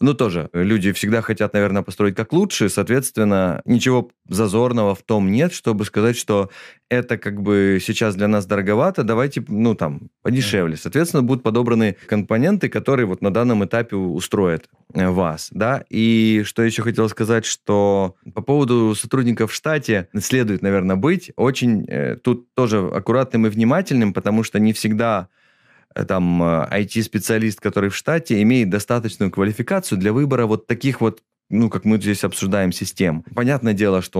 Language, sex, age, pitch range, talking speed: Russian, male, 20-39, 100-120 Hz, 155 wpm